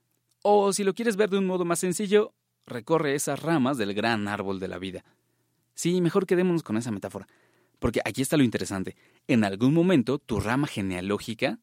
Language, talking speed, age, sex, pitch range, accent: Spanish, 185 wpm, 30-49, male, 105-150 Hz, Mexican